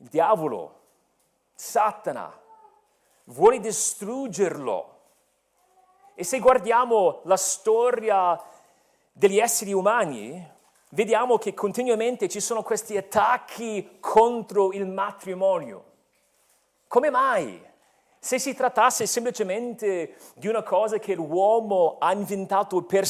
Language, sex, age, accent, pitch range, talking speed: Italian, male, 40-59, native, 190-235 Hz, 95 wpm